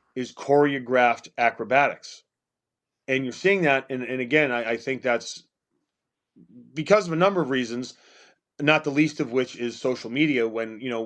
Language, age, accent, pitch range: English, 30-49, American, 125-155 Hz